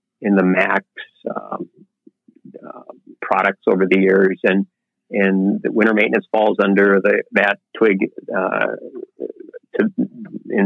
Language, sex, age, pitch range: English, male, 50-69, 100-120 Hz